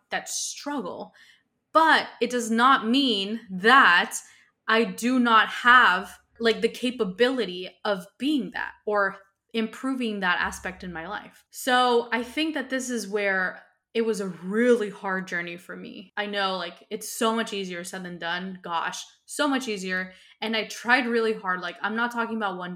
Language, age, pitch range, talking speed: English, 20-39, 190-230 Hz, 170 wpm